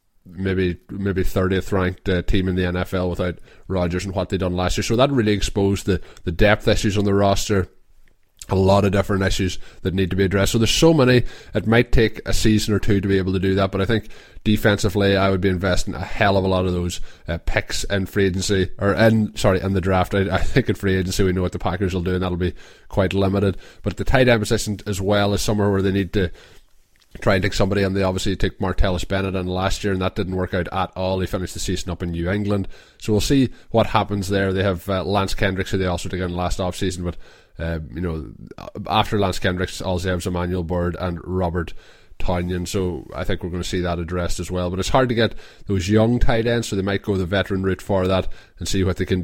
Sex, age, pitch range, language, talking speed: male, 20-39, 90-100 Hz, English, 250 wpm